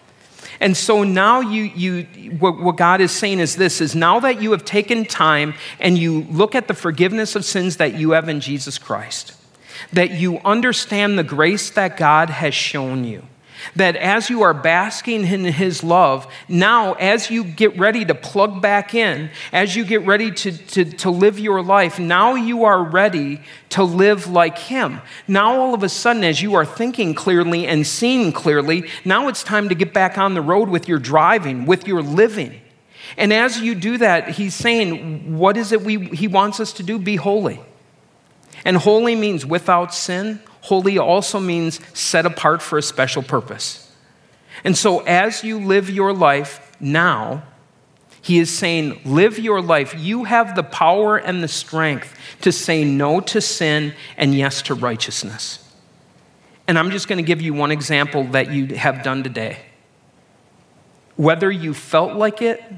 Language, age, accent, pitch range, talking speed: English, 40-59, American, 155-205 Hz, 175 wpm